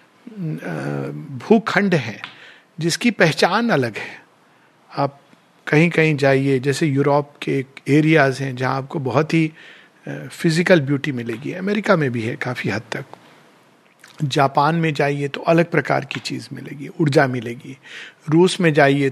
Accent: native